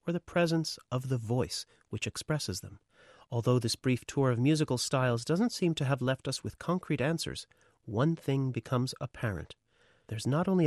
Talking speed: 175 wpm